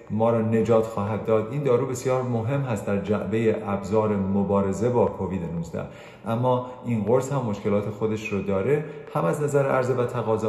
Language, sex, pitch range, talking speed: Persian, male, 100-130 Hz, 175 wpm